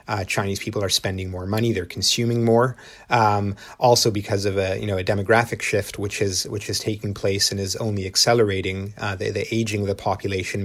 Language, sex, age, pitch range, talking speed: English, male, 30-49, 100-110 Hz, 210 wpm